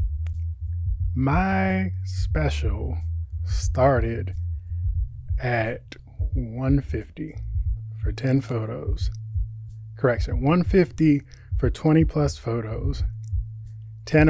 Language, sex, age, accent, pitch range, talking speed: English, male, 20-39, American, 105-125 Hz, 65 wpm